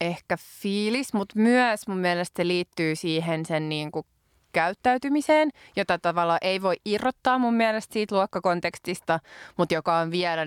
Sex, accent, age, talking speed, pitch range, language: female, native, 20-39, 150 wpm, 165-195 Hz, Finnish